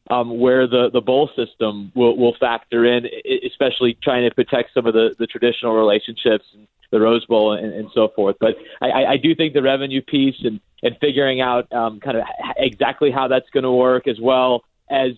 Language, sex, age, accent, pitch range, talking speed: English, male, 30-49, American, 115-135 Hz, 200 wpm